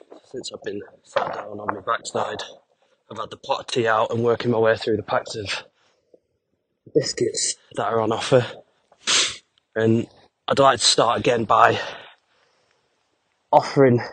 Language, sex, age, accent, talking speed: English, male, 20-39, British, 155 wpm